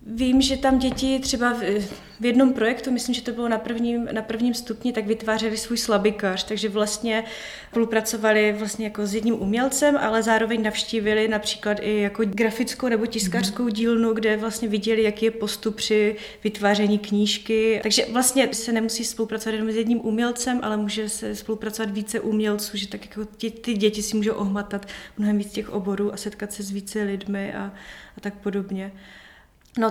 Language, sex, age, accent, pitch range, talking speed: Czech, female, 30-49, native, 205-225 Hz, 175 wpm